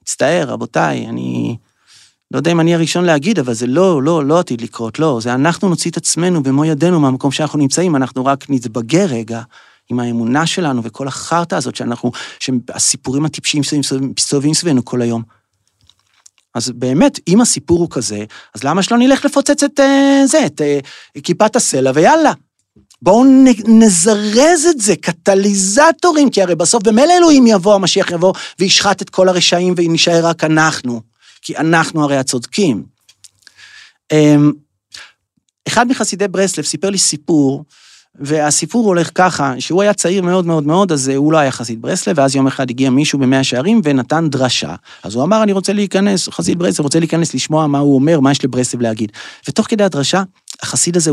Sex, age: male, 30-49